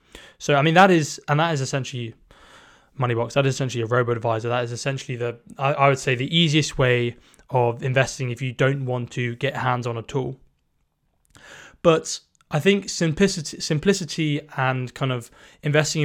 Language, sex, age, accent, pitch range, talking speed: English, male, 20-39, British, 120-145 Hz, 175 wpm